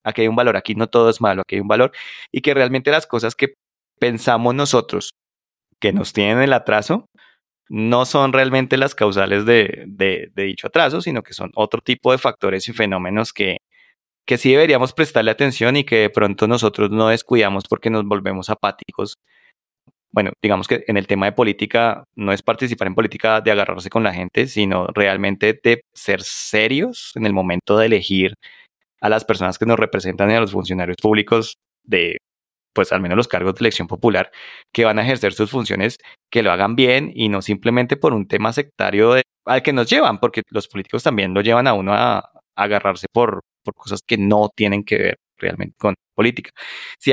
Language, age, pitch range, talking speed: Spanish, 20-39, 100-125 Hz, 195 wpm